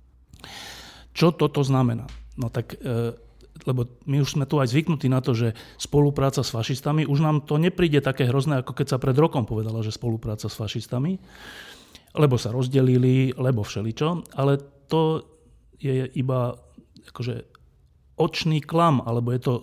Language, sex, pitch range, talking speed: Slovak, male, 115-145 Hz, 150 wpm